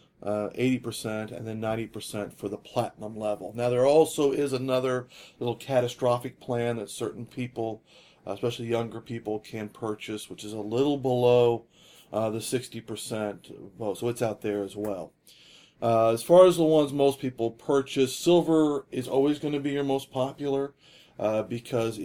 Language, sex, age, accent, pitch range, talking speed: English, male, 40-59, American, 115-135 Hz, 160 wpm